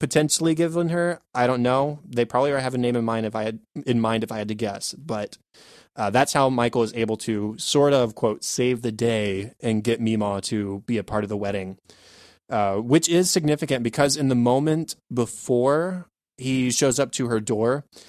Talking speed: 205 wpm